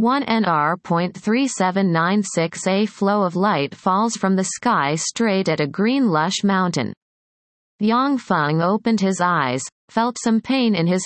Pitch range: 175-225 Hz